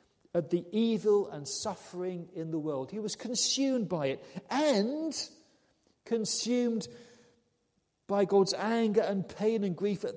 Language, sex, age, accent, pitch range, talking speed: English, male, 40-59, British, 150-215 Hz, 135 wpm